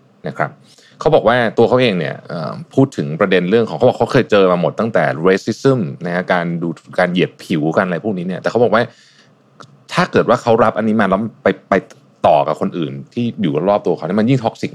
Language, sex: Thai, male